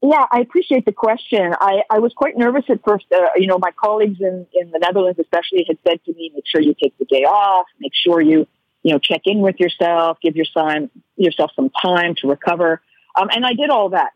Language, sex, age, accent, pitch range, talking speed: English, female, 50-69, American, 175-235 Hz, 235 wpm